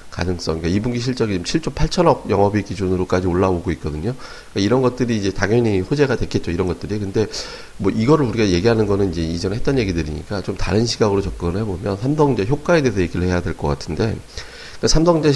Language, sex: Korean, male